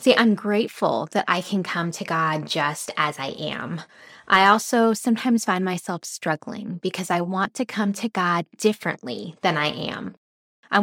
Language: English